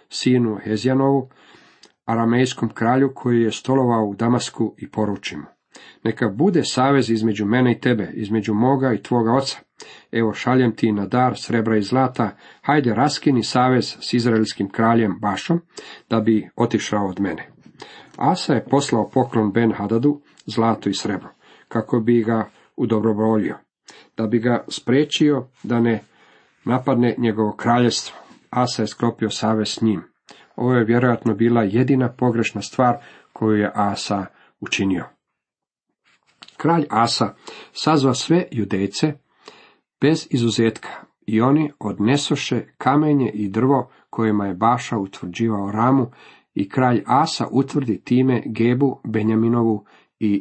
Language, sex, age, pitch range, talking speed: Croatian, male, 50-69, 110-130 Hz, 130 wpm